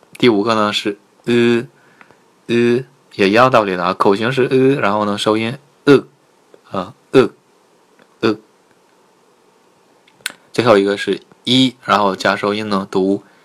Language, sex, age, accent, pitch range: Chinese, male, 20-39, native, 100-120 Hz